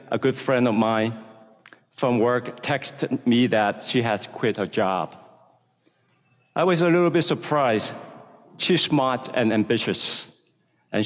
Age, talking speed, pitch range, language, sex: 50-69, 140 wpm, 110-140 Hz, English, male